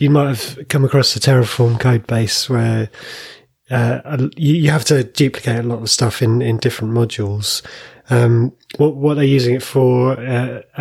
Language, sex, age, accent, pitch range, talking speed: English, male, 30-49, British, 120-140 Hz, 180 wpm